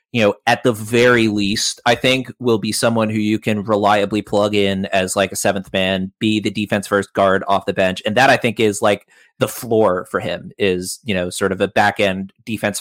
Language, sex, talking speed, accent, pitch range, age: English, male, 230 wpm, American, 100-120 Hz, 30-49